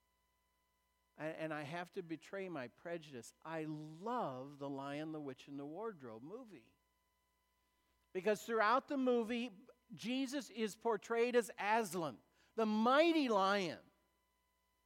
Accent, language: American, English